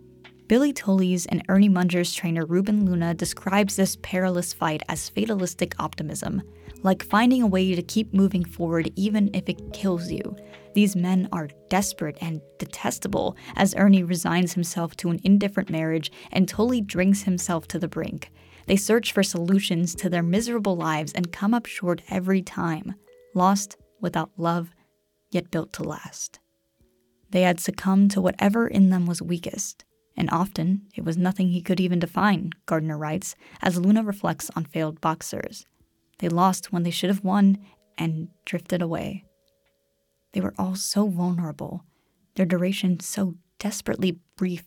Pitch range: 165-195 Hz